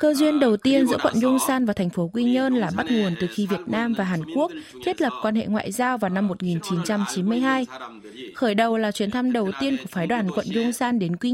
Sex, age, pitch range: female, 20-39, 195-255 Hz